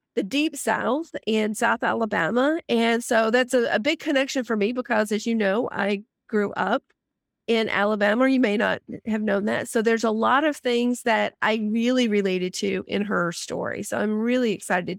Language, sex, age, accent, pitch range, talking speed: English, female, 40-59, American, 220-260 Hz, 195 wpm